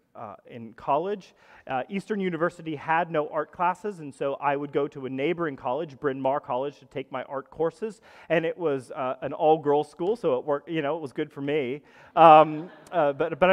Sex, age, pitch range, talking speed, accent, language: male, 30-49, 150-215 Hz, 215 wpm, American, English